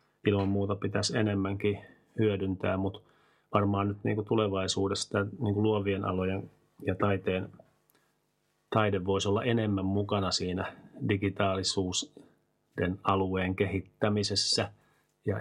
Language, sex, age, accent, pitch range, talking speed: Finnish, male, 30-49, native, 95-105 Hz, 95 wpm